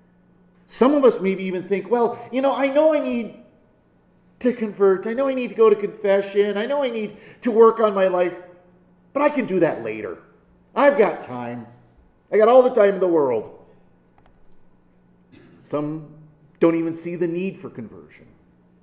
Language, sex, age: English, male, 40-59